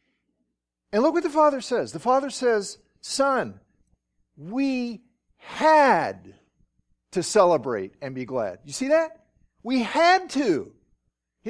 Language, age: English, 50-69